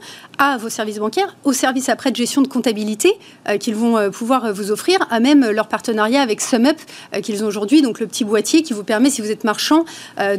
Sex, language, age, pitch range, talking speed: female, French, 30-49, 215-280 Hz, 245 wpm